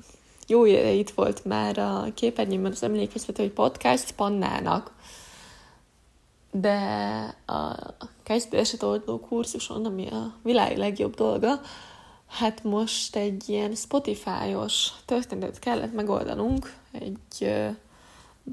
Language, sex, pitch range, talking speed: Hungarian, female, 140-235 Hz, 105 wpm